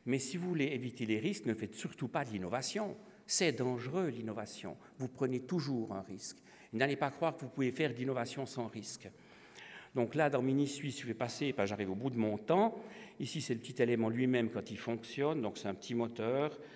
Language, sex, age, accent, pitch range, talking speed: French, male, 50-69, French, 110-145 Hz, 210 wpm